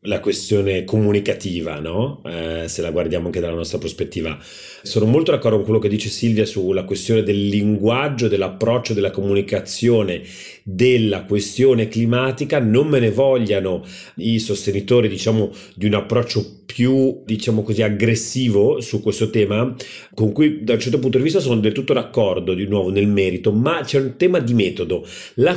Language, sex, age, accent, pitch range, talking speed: Italian, male, 40-59, native, 100-135 Hz, 165 wpm